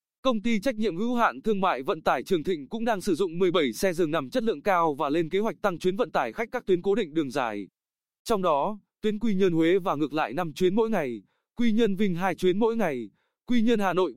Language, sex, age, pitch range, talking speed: Vietnamese, male, 20-39, 165-215 Hz, 265 wpm